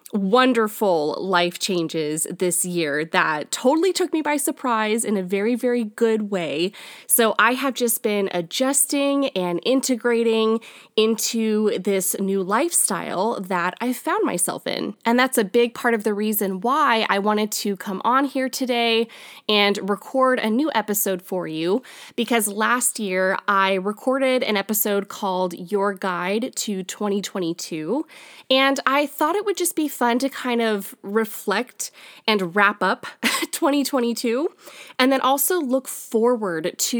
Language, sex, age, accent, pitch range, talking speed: English, female, 20-39, American, 200-255 Hz, 150 wpm